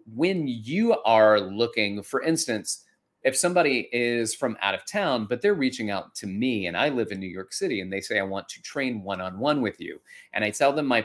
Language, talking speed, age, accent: English, 225 wpm, 30-49, American